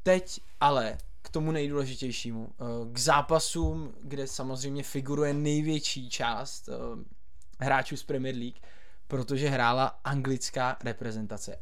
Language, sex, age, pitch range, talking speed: Czech, male, 20-39, 120-140 Hz, 105 wpm